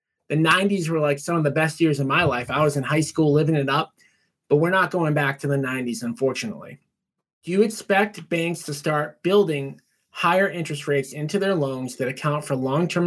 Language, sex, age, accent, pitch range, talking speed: English, male, 30-49, American, 135-165 Hz, 210 wpm